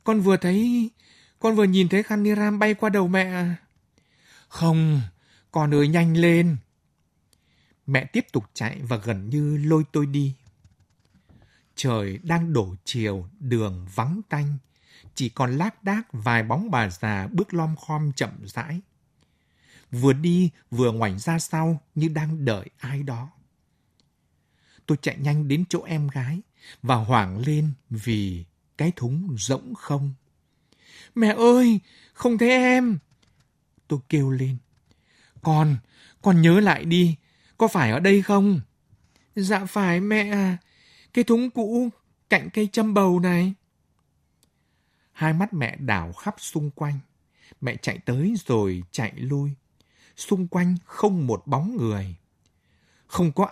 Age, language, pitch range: 60-79, Vietnamese, 115-180 Hz